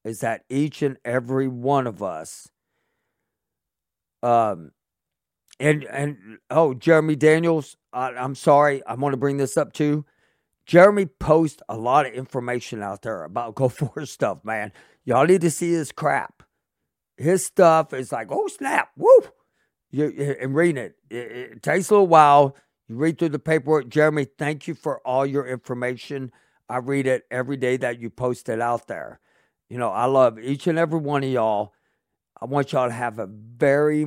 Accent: American